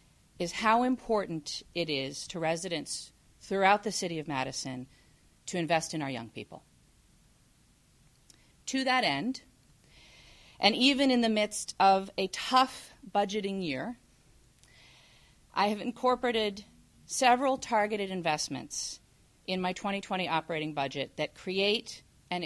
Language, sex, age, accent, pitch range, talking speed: English, female, 40-59, American, 165-230 Hz, 120 wpm